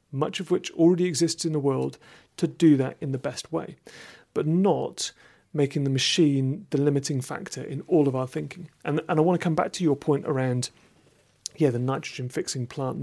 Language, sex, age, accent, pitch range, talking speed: English, male, 40-59, British, 130-160 Hz, 200 wpm